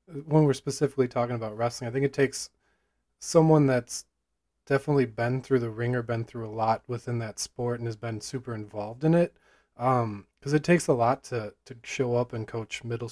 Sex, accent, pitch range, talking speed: male, American, 115-135 Hz, 205 wpm